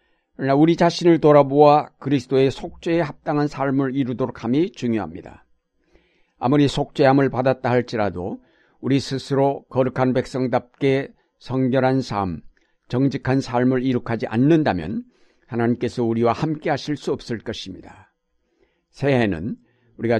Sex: male